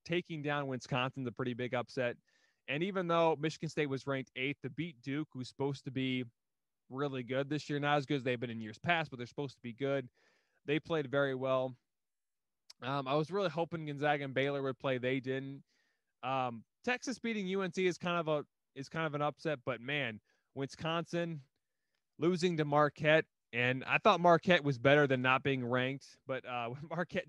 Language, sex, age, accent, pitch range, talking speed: English, male, 20-39, American, 125-160 Hz, 195 wpm